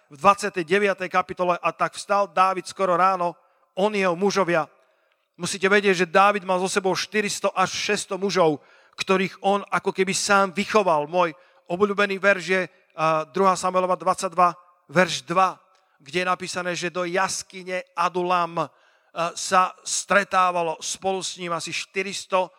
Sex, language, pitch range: male, Slovak, 175-200 Hz